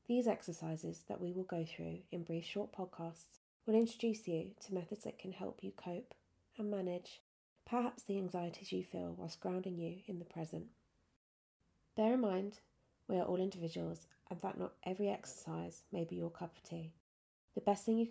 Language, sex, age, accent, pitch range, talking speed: English, female, 30-49, British, 160-195 Hz, 185 wpm